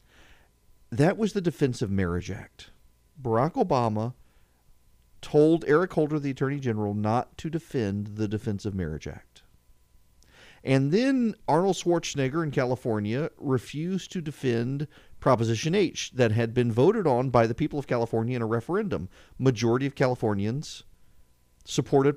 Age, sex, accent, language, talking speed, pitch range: 40-59, male, American, English, 140 wpm, 105-150 Hz